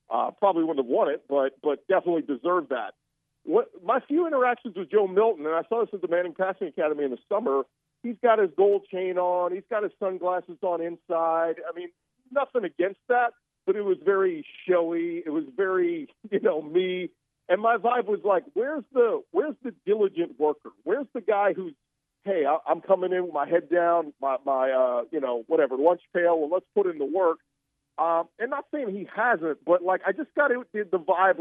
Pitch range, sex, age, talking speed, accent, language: 165-245 Hz, male, 50-69, 210 wpm, American, English